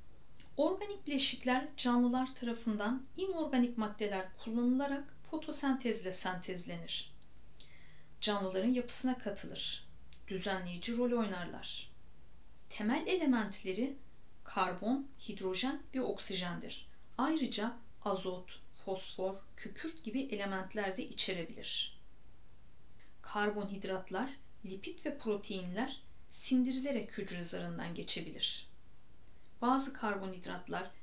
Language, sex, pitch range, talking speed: Turkish, female, 190-260 Hz, 75 wpm